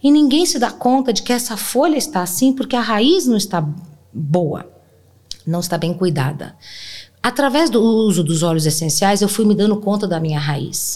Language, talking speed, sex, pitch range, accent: Portuguese, 190 wpm, female, 170-235 Hz, Brazilian